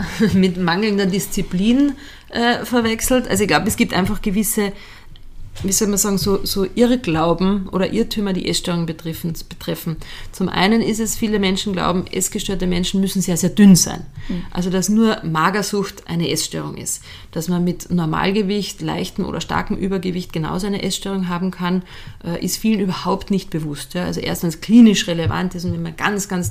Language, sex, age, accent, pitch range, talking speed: German, female, 30-49, German, 175-210 Hz, 165 wpm